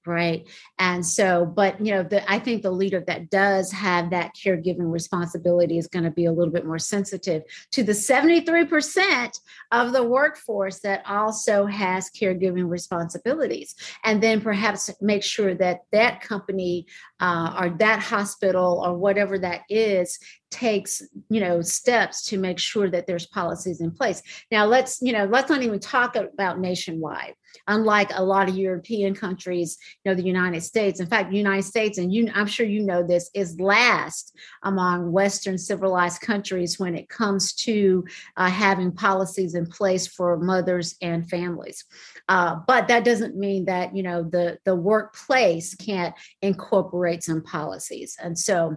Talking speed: 165 wpm